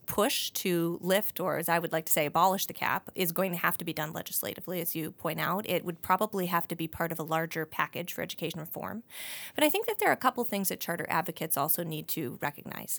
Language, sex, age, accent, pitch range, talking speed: English, female, 30-49, American, 165-200 Hz, 255 wpm